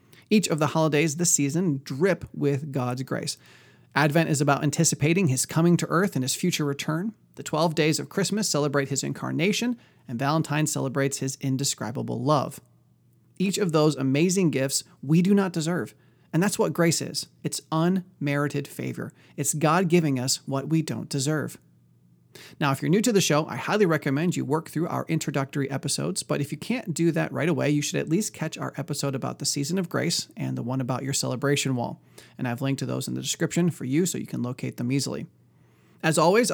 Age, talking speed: 30-49, 200 wpm